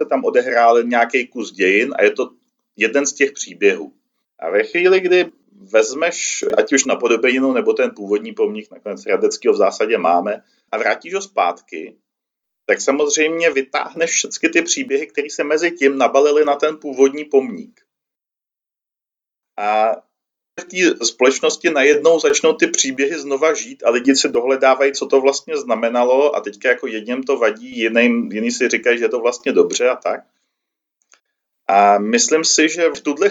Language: Czech